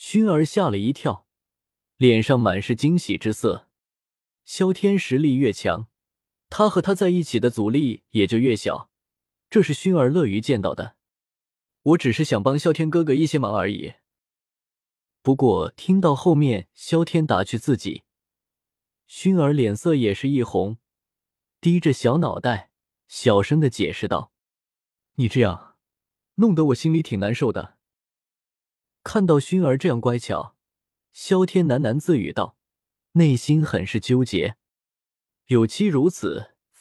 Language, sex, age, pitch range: Chinese, male, 20-39, 110-165 Hz